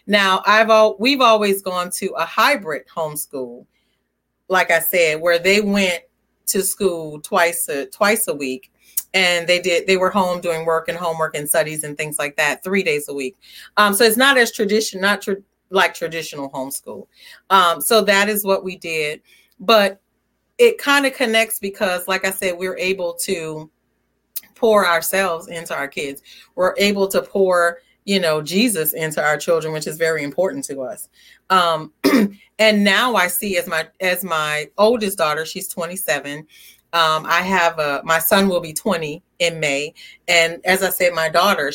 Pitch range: 165-205 Hz